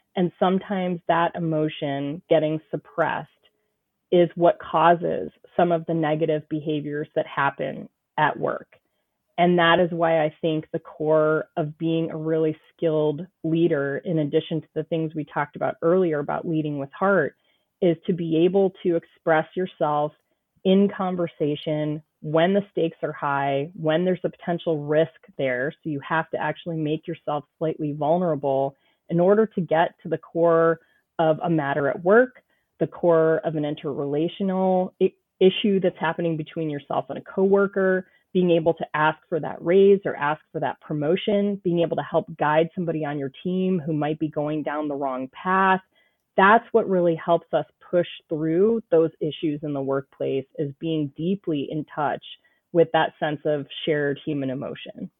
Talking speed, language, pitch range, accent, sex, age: 165 wpm, English, 150-175 Hz, American, female, 30-49